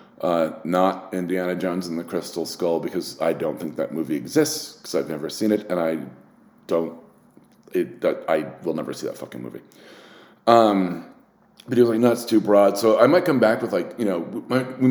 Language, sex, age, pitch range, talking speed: English, male, 30-49, 95-125 Hz, 195 wpm